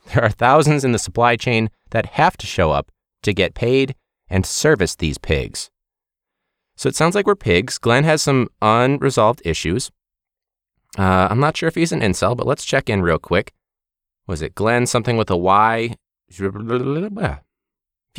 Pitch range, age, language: 95-135 Hz, 30-49, English